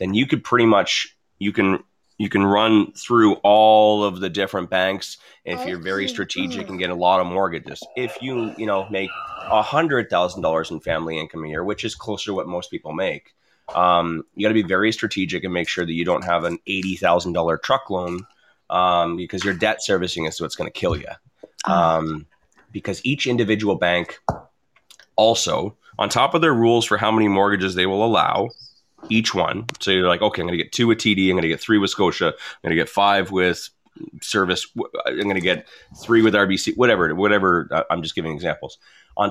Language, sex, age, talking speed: English, male, 20-39, 215 wpm